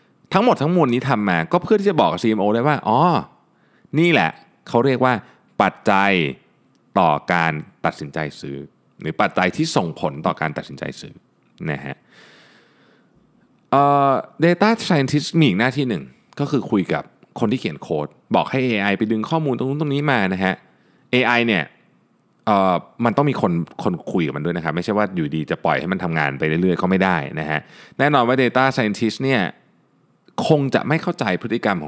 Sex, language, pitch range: male, Thai, 95-145 Hz